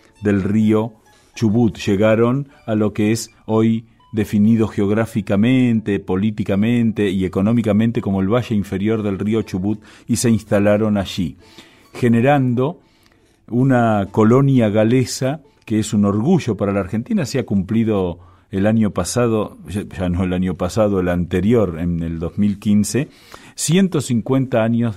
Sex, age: male, 40-59